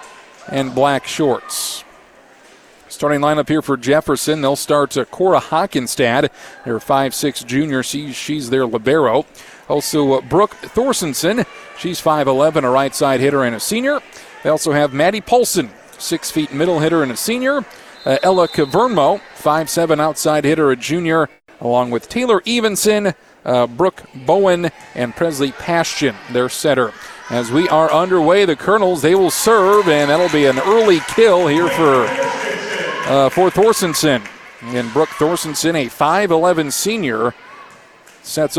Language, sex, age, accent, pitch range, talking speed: English, male, 40-59, American, 135-175 Hz, 140 wpm